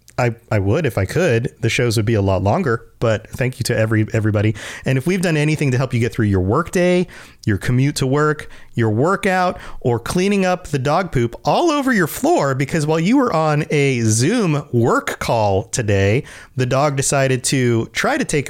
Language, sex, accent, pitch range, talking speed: English, male, American, 120-165 Hz, 210 wpm